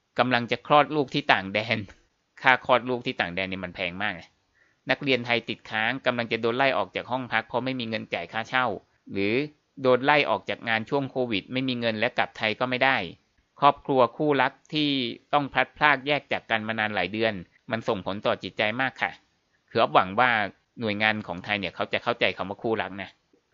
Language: Thai